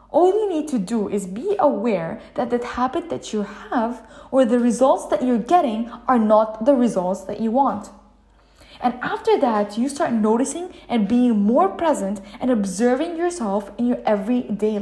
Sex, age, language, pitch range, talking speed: female, 10-29, English, 215-285 Hz, 175 wpm